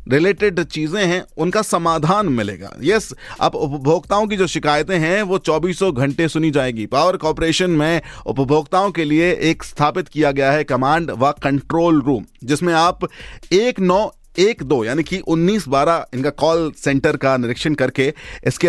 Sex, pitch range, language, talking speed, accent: male, 130-175 Hz, Hindi, 160 wpm, native